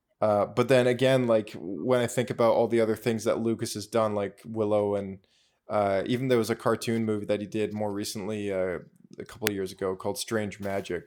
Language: English